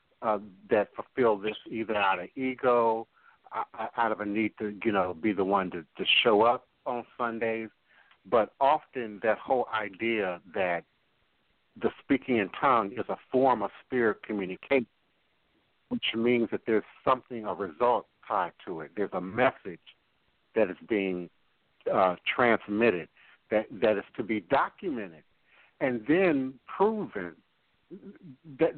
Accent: American